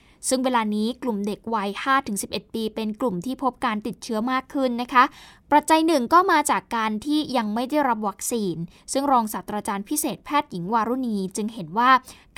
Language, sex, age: Thai, female, 10-29